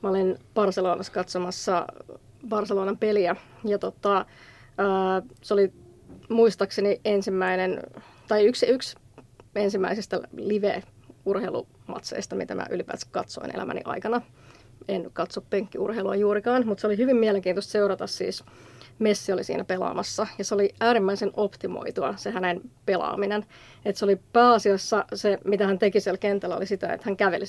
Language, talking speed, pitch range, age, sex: Finnish, 135 wpm, 190-210 Hz, 30-49, female